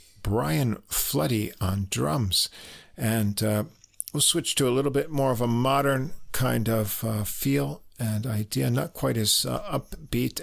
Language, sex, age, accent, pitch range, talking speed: English, male, 50-69, American, 105-140 Hz, 155 wpm